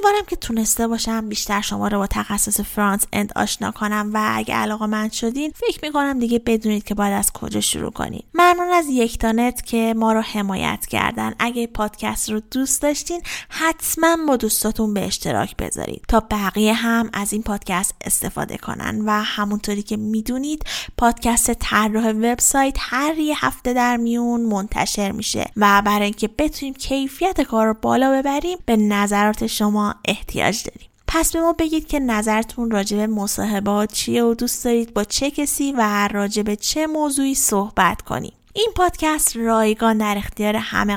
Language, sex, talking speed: Persian, female, 170 wpm